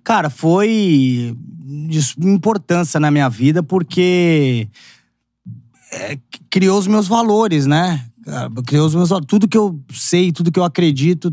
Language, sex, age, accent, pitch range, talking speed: Portuguese, male, 20-39, Brazilian, 145-185 Hz, 130 wpm